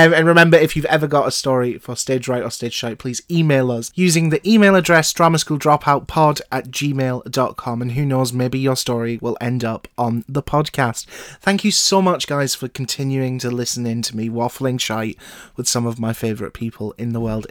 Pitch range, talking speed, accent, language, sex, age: 120-145 Hz, 200 wpm, British, English, male, 30-49